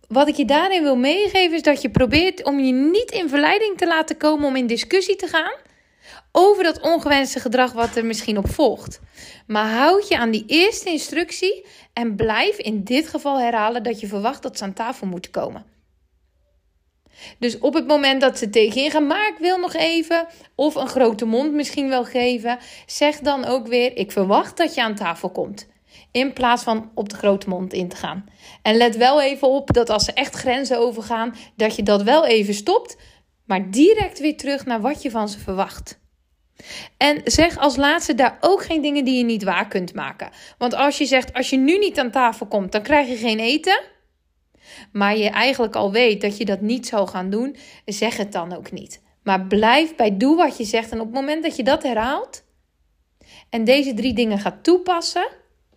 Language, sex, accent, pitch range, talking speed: Dutch, female, Dutch, 220-300 Hz, 205 wpm